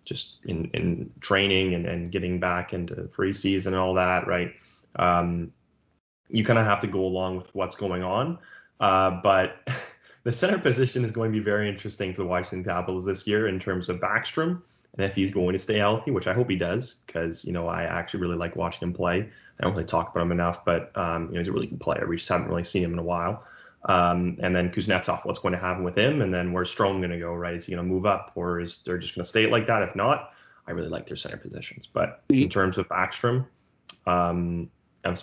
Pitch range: 90-100 Hz